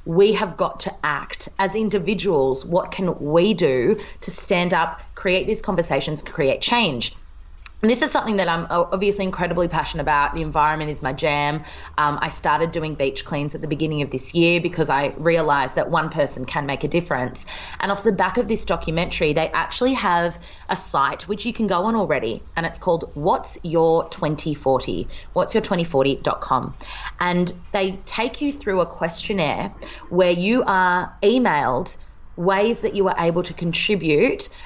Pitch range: 155-190 Hz